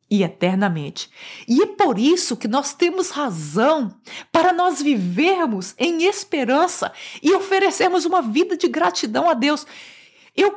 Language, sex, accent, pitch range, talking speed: Portuguese, female, Brazilian, 245-365 Hz, 135 wpm